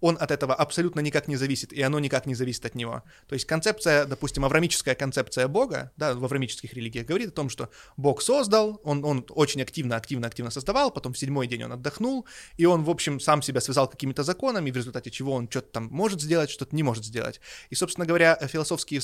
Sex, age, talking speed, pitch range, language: male, 20-39, 215 wpm, 130-170 Hz, Russian